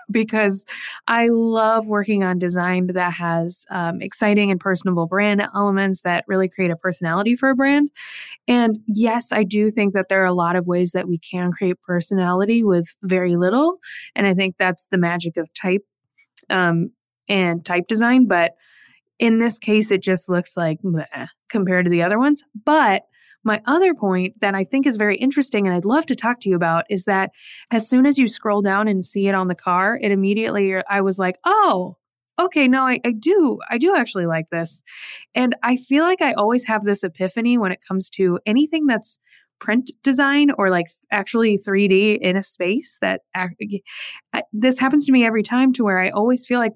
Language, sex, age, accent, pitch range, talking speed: English, female, 20-39, American, 185-240 Hz, 195 wpm